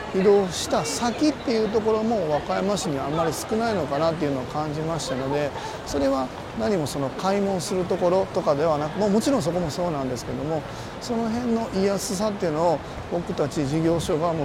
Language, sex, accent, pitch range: Japanese, male, native, 135-175 Hz